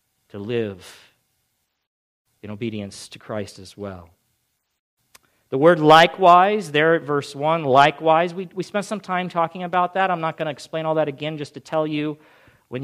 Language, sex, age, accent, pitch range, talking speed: English, male, 40-59, American, 135-170 Hz, 175 wpm